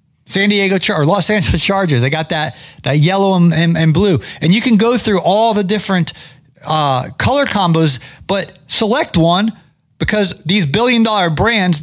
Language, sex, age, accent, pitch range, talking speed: English, male, 30-49, American, 145-195 Hz, 180 wpm